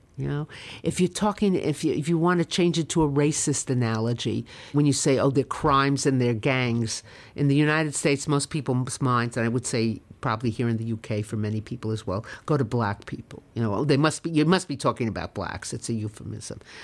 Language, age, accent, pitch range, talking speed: English, 50-69, American, 115-155 Hz, 230 wpm